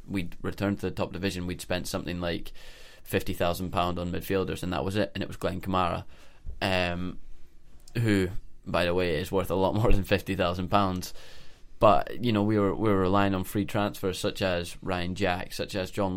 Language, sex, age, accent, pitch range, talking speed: English, male, 20-39, British, 90-100 Hz, 195 wpm